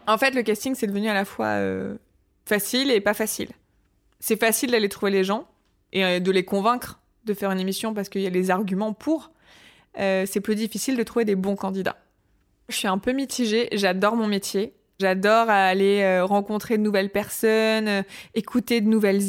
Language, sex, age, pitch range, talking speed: French, female, 20-39, 195-235 Hz, 190 wpm